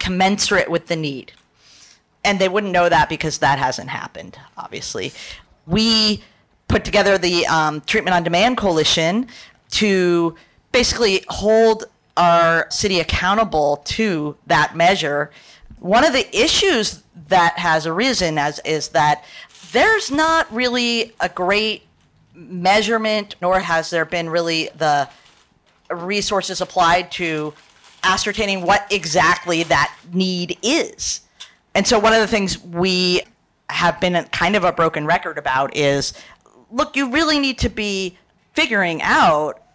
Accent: American